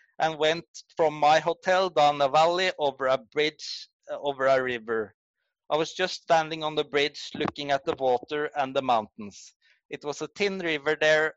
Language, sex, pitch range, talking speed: English, male, 135-165 Hz, 185 wpm